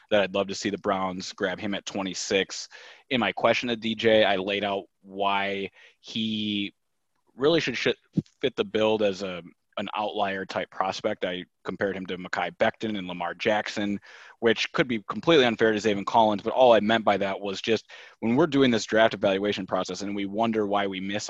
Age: 30-49